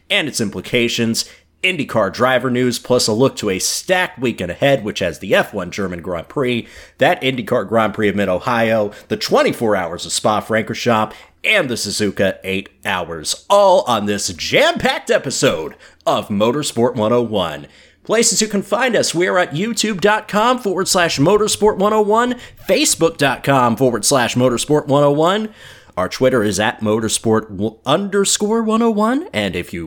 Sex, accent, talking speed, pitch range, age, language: male, American, 150 wpm, 100-160 Hz, 30-49, English